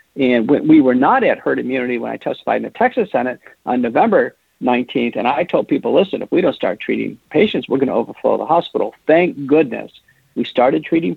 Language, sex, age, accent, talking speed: English, male, 50-69, American, 210 wpm